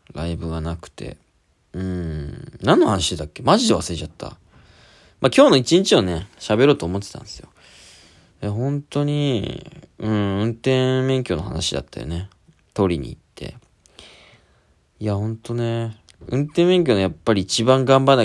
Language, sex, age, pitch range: Japanese, male, 20-39, 85-140 Hz